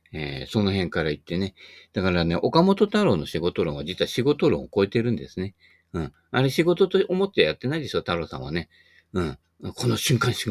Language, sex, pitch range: Japanese, male, 85-120 Hz